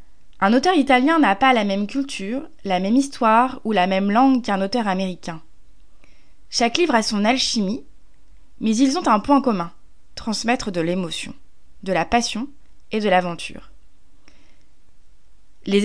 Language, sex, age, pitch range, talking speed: French, female, 20-39, 195-270 Hz, 150 wpm